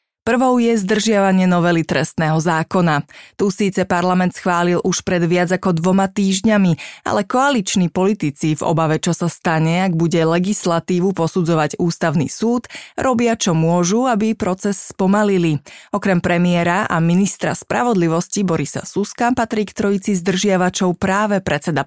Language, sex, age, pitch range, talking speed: Slovak, female, 30-49, 170-200 Hz, 135 wpm